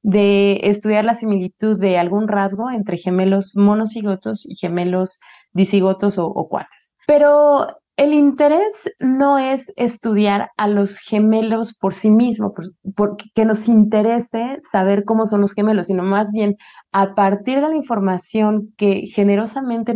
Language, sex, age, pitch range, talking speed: Spanish, female, 30-49, 195-235 Hz, 140 wpm